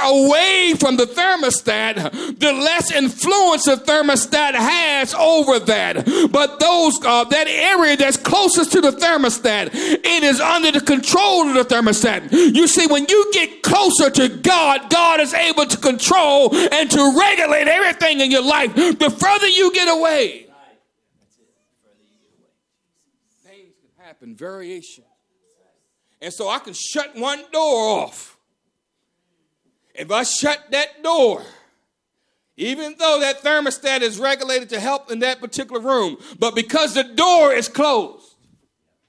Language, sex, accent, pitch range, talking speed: English, male, American, 255-330 Hz, 135 wpm